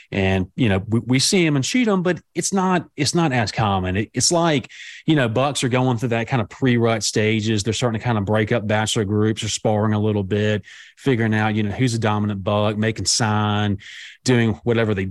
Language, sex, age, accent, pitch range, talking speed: English, male, 30-49, American, 100-125 Hz, 230 wpm